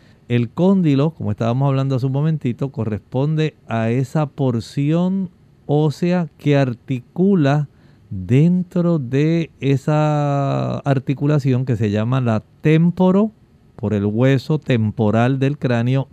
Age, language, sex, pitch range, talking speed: 50-69, Spanish, male, 120-155 Hz, 110 wpm